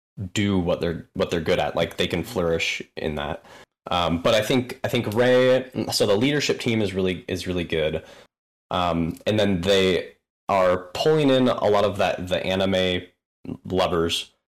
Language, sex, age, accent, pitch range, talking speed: English, male, 20-39, American, 90-115 Hz, 175 wpm